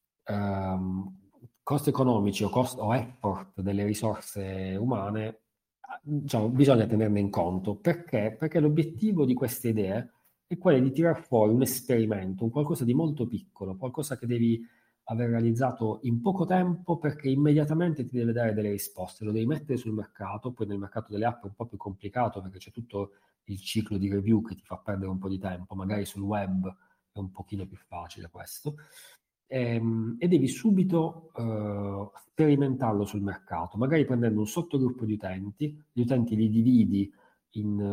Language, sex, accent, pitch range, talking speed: Italian, male, native, 100-130 Hz, 165 wpm